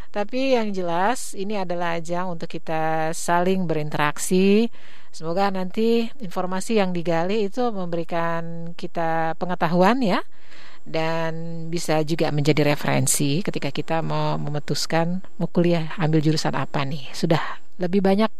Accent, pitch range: native, 165-225 Hz